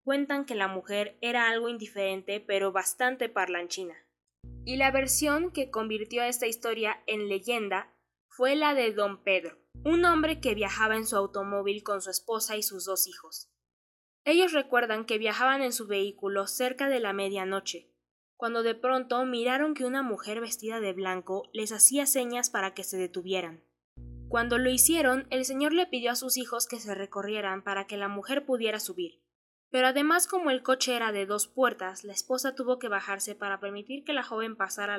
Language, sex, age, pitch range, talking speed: Spanish, female, 10-29, 195-255 Hz, 185 wpm